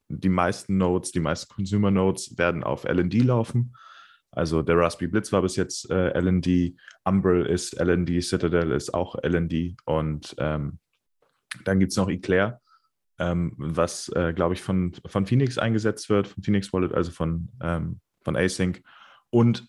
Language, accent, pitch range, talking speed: German, German, 90-105 Hz, 150 wpm